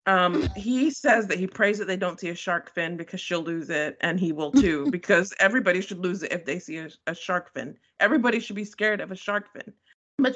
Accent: American